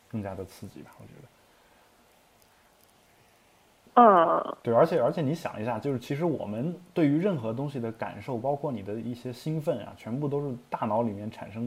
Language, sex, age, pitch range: Chinese, male, 20-39, 105-140 Hz